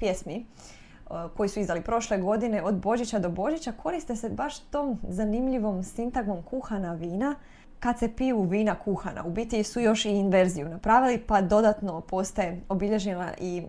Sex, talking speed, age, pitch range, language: female, 155 wpm, 20-39, 185-235 Hz, Croatian